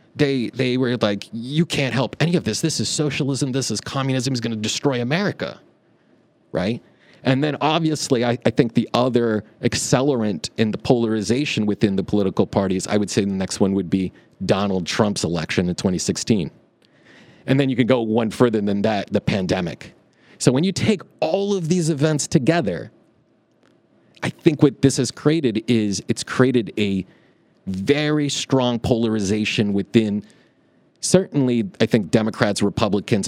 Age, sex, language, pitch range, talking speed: 30-49, male, English, 105-140 Hz, 160 wpm